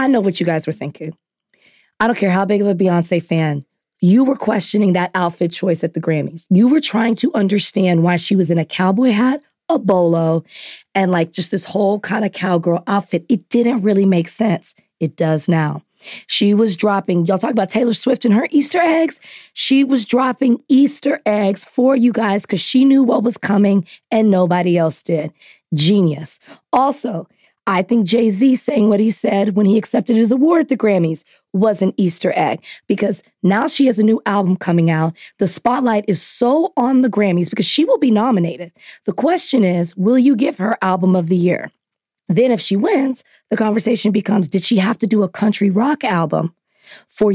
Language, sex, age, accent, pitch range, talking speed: English, female, 20-39, American, 180-235 Hz, 200 wpm